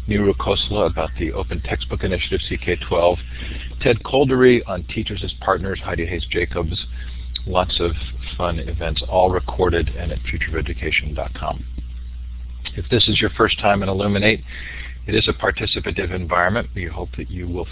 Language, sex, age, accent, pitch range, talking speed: English, male, 50-69, American, 75-100 Hz, 150 wpm